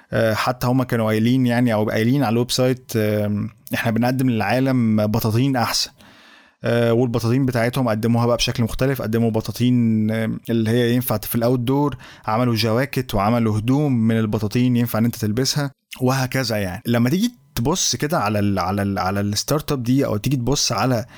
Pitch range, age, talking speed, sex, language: 115-140 Hz, 20-39, 155 wpm, male, Arabic